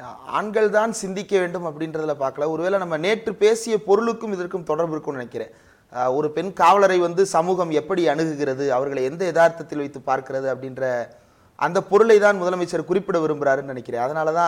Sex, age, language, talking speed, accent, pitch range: male, 30-49, Tamil, 140 wpm, native, 140-180 Hz